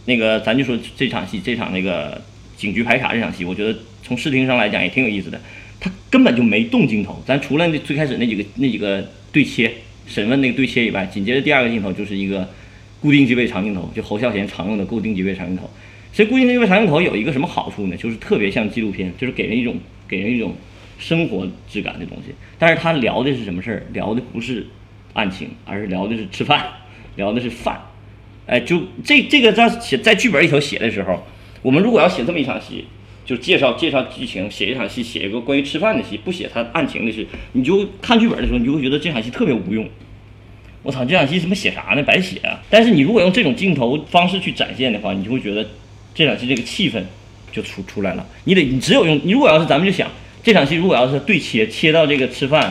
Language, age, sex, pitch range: Chinese, 30-49, male, 105-165 Hz